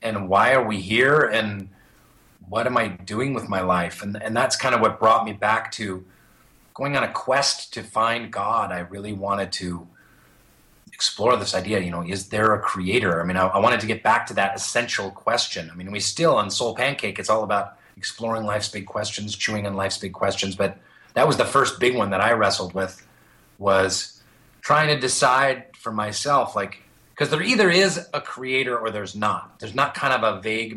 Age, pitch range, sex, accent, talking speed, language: 30-49, 95-130 Hz, male, American, 210 wpm, English